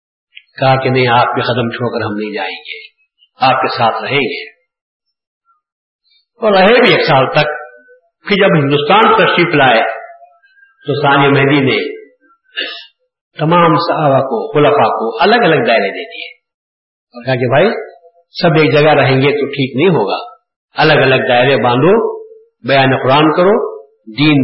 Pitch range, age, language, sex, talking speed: 140-220 Hz, 50-69, Urdu, male, 150 wpm